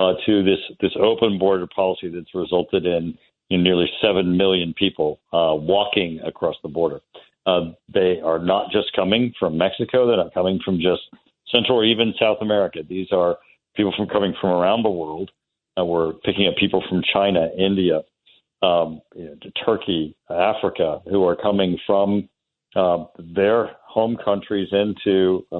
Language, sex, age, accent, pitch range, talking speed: English, male, 50-69, American, 90-105 Hz, 155 wpm